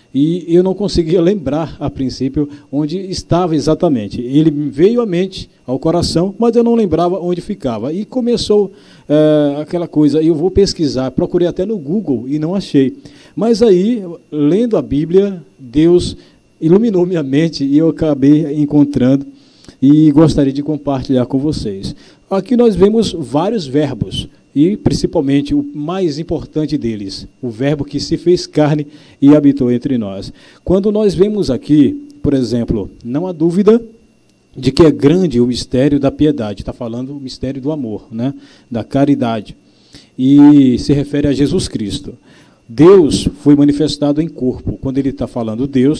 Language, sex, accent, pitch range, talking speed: Portuguese, male, Brazilian, 135-175 Hz, 155 wpm